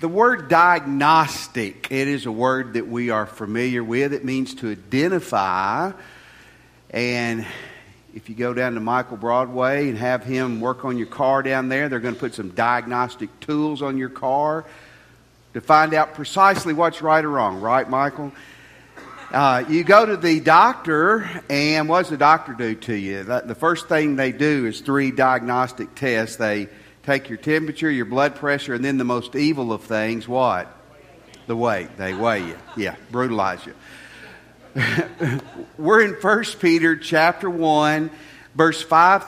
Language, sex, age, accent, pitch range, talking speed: English, male, 50-69, American, 125-165 Hz, 165 wpm